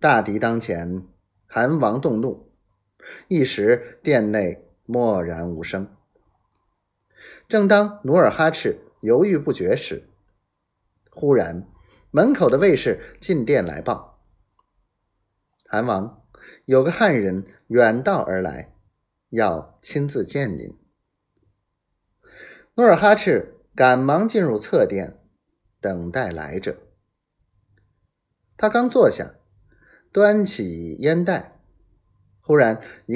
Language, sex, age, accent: Chinese, male, 30-49, native